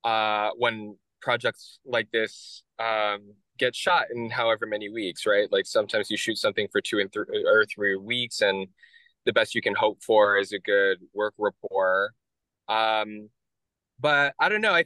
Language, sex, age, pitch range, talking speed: English, male, 10-29, 110-150 Hz, 175 wpm